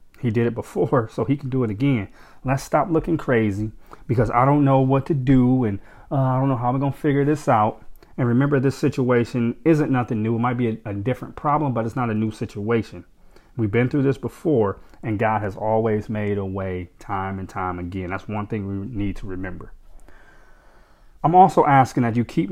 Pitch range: 105-130 Hz